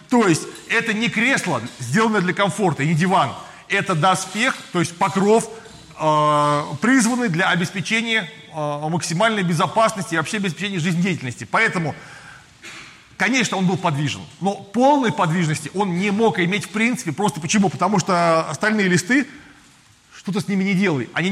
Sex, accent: male, native